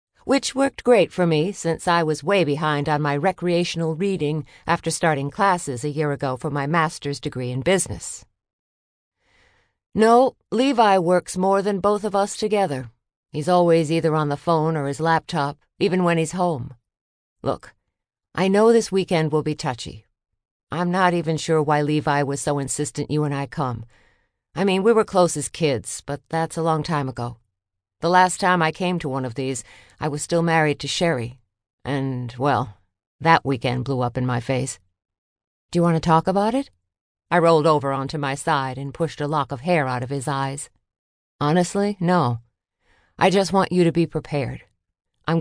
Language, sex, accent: English, female, American